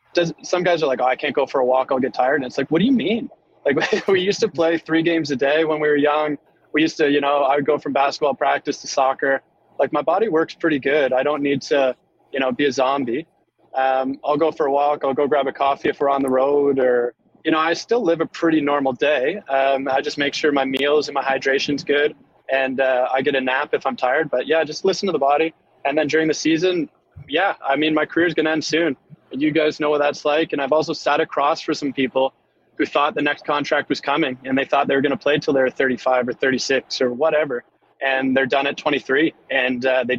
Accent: American